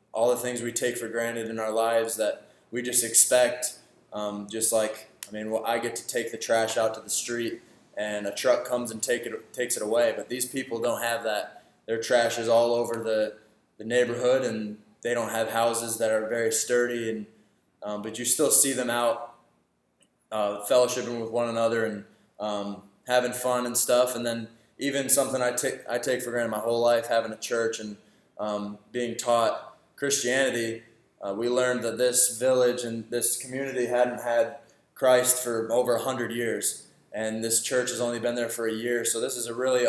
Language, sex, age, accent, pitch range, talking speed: English, male, 20-39, American, 115-125 Hz, 200 wpm